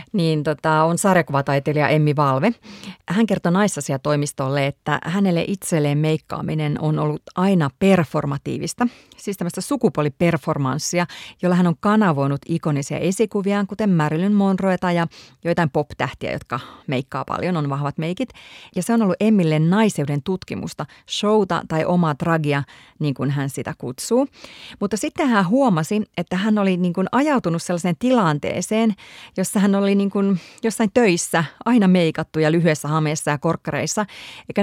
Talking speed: 140 wpm